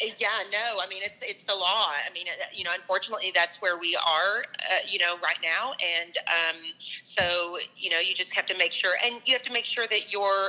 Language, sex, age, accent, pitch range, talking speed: English, female, 30-49, American, 175-225 Hz, 235 wpm